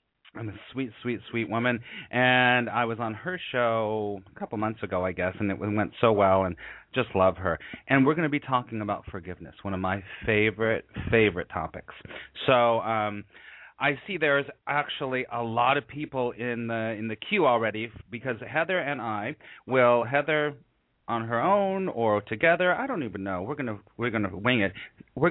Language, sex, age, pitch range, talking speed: English, male, 30-49, 105-135 Hz, 190 wpm